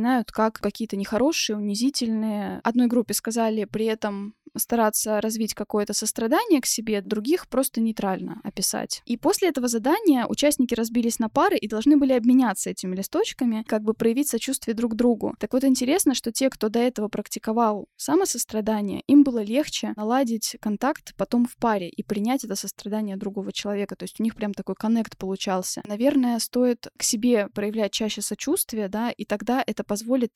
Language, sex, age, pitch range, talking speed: Russian, female, 10-29, 210-250 Hz, 165 wpm